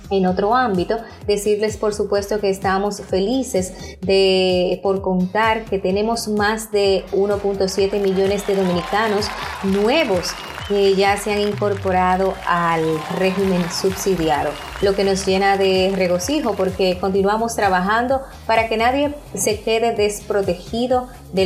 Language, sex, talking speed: Spanish, female, 125 wpm